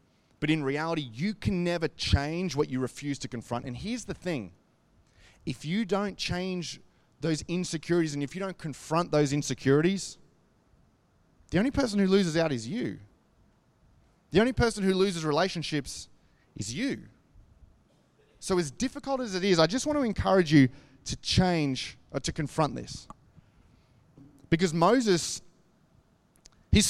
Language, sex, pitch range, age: English, male, 150-200 Hz, 30-49